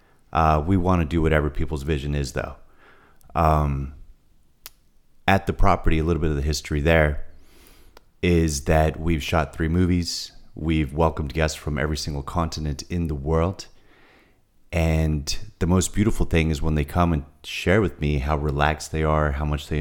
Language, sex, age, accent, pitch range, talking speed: English, male, 30-49, American, 75-85 Hz, 175 wpm